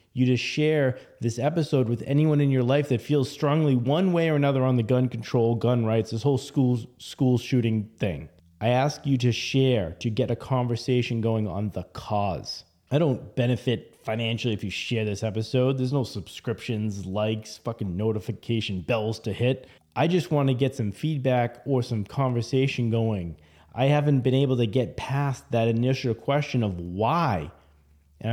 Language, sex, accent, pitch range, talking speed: English, male, American, 115-145 Hz, 180 wpm